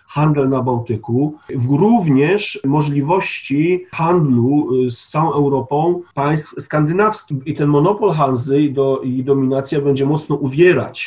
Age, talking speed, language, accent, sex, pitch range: 40-59, 120 wpm, Polish, native, male, 130-180 Hz